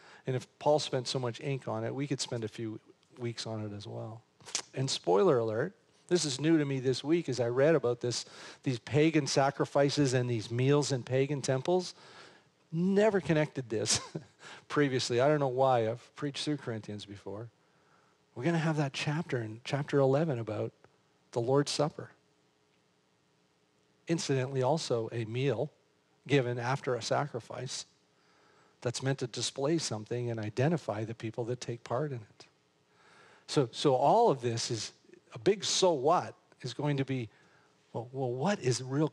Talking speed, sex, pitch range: 170 wpm, male, 115-145 Hz